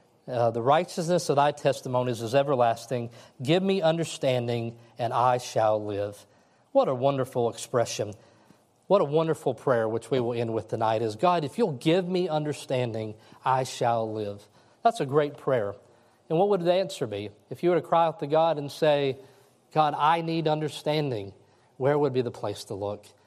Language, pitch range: English, 115-145 Hz